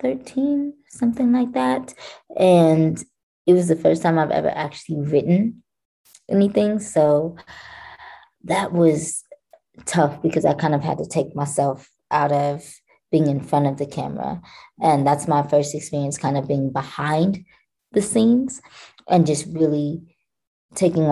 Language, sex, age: English, female, 20-39